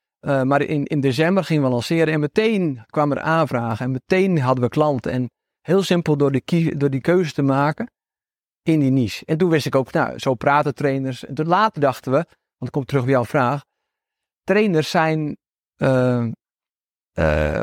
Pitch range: 130-170 Hz